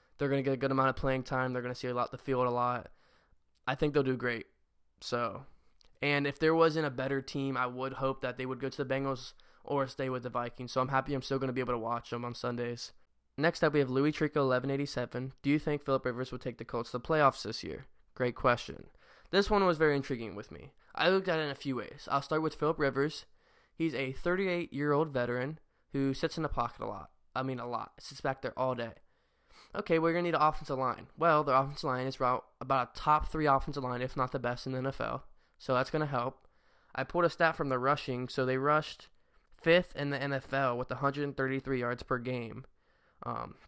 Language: English